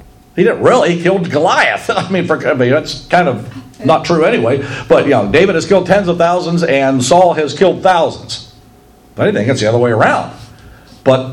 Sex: male